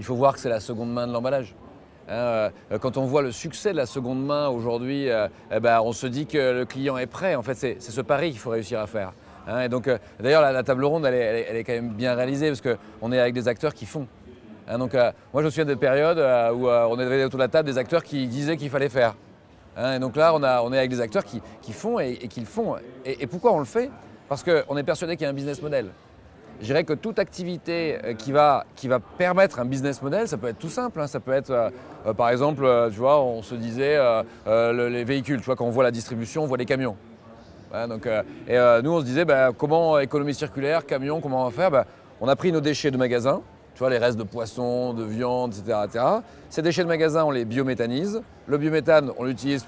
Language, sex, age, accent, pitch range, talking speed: French, male, 40-59, French, 120-150 Hz, 250 wpm